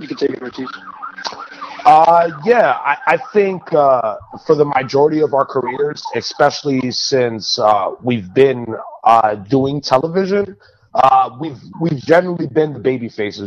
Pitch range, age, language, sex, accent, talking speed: 130-165 Hz, 30-49, English, male, American, 145 wpm